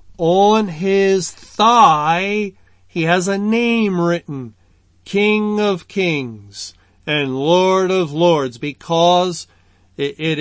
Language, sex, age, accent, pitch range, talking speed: English, male, 50-69, American, 140-185 Hz, 100 wpm